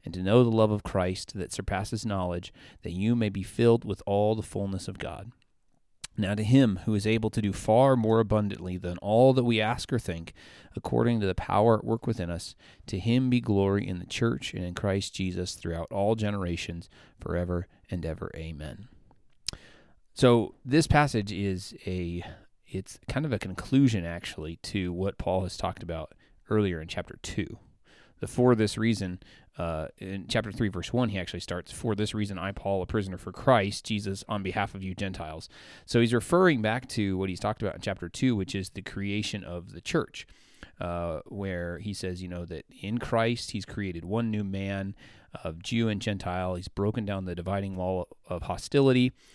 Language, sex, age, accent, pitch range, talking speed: English, male, 30-49, American, 90-110 Hz, 195 wpm